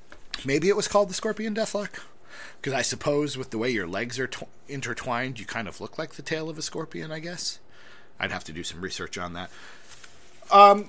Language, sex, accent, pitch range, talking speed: English, male, American, 115-170 Hz, 215 wpm